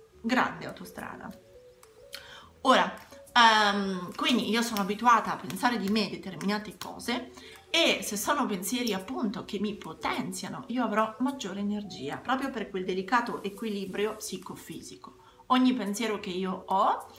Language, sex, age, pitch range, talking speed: Italian, female, 30-49, 190-235 Hz, 125 wpm